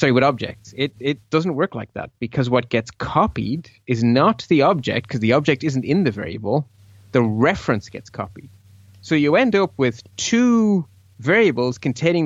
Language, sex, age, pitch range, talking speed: English, male, 30-49, 115-150 Hz, 175 wpm